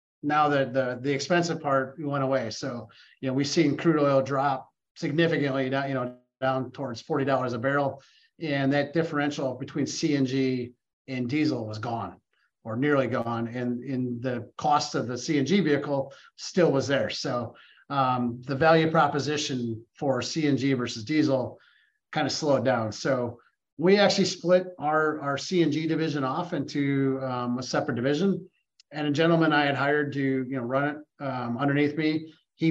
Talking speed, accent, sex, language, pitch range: 165 wpm, American, male, English, 130-155 Hz